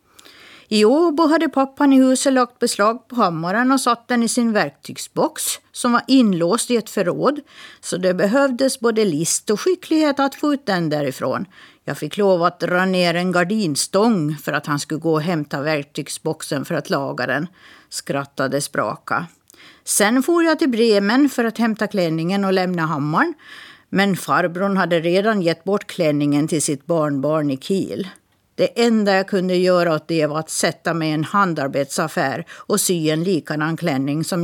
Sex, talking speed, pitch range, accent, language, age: female, 175 wpm, 160-240 Hz, native, Swedish, 50-69